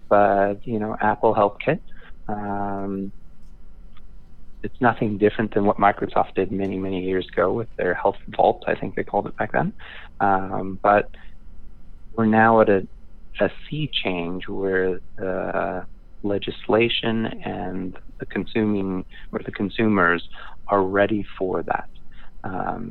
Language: English